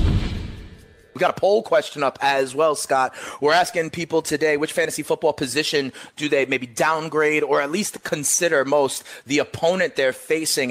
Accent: American